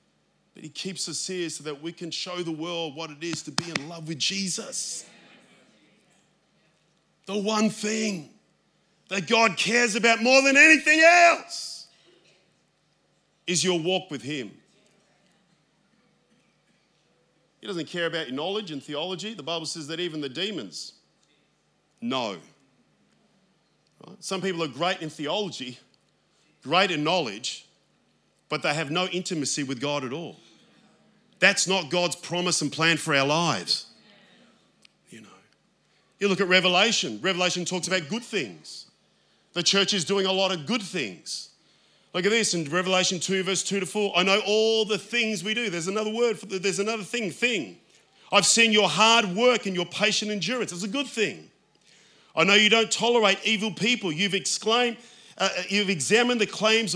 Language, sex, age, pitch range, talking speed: English, male, 40-59, 170-220 Hz, 160 wpm